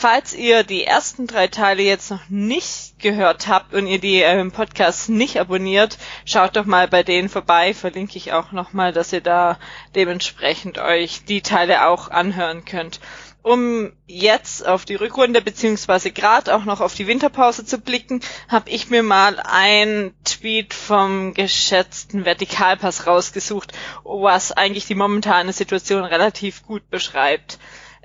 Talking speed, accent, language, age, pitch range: 150 wpm, German, German, 20-39, 185-225 Hz